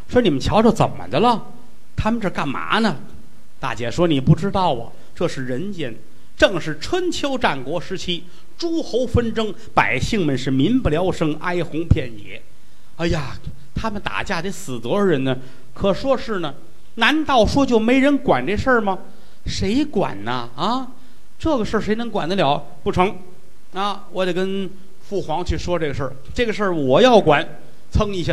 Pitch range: 135-205 Hz